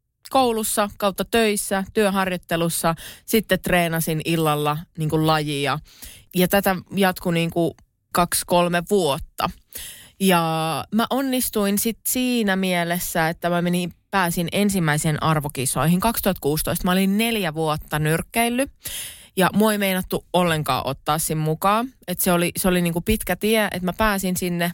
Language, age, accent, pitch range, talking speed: Finnish, 20-39, native, 165-215 Hz, 135 wpm